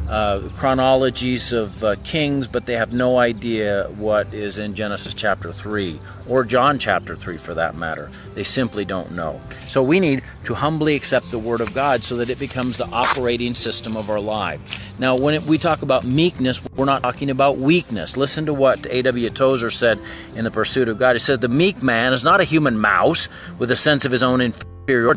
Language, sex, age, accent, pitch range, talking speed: English, male, 40-59, American, 110-150 Hz, 205 wpm